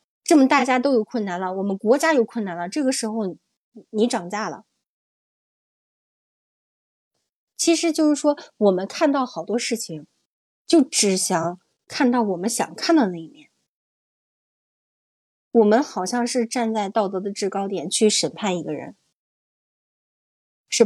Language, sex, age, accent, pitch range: Chinese, female, 20-39, native, 185-265 Hz